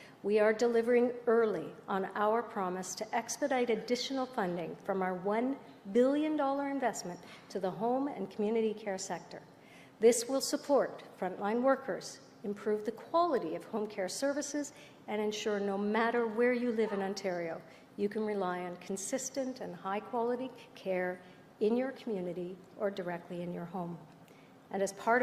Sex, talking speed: female, 150 wpm